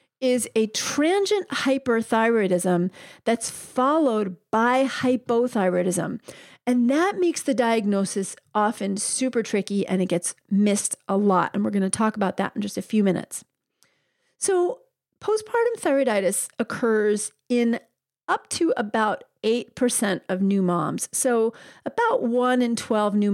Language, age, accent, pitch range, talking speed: English, 40-59, American, 200-255 Hz, 135 wpm